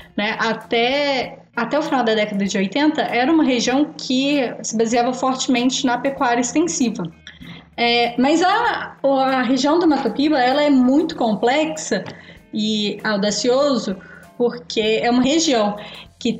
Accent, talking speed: Brazilian, 140 wpm